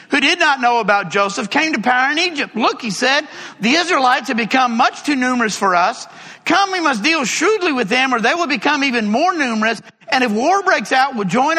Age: 50-69